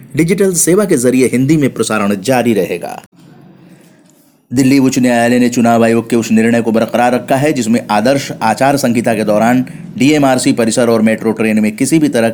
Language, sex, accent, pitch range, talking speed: Hindi, male, native, 115-135 Hz, 180 wpm